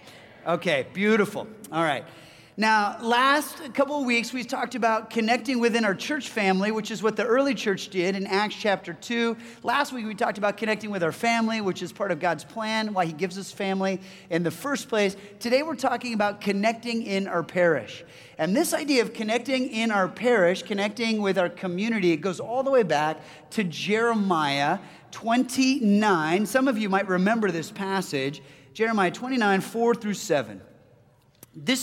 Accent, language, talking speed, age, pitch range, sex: American, English, 175 wpm, 30-49, 180-235 Hz, male